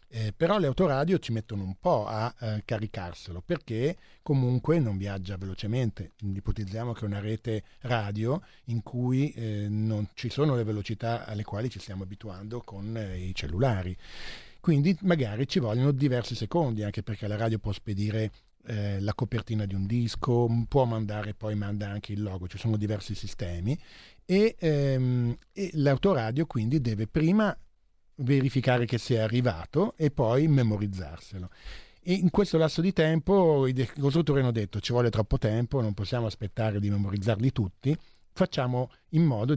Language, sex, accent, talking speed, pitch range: Italian, male, native, 160 wpm, 100-135 Hz